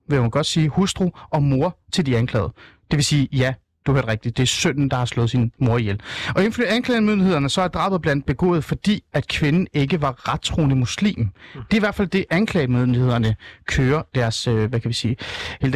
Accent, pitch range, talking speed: native, 125-175 Hz, 215 wpm